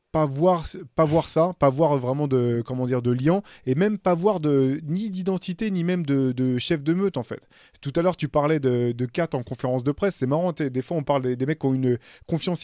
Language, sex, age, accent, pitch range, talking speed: French, male, 20-39, French, 125-160 Hz, 255 wpm